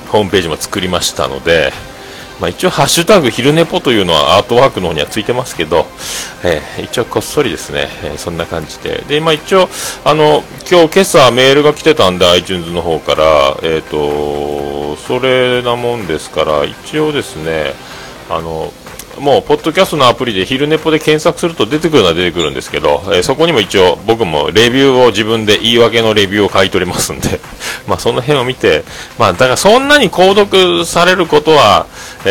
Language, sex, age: Japanese, male, 40-59